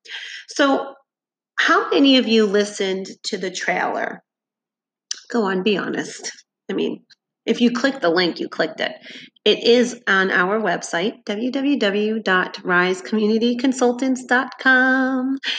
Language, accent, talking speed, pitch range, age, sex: English, American, 110 wpm, 195-260 Hz, 30-49, female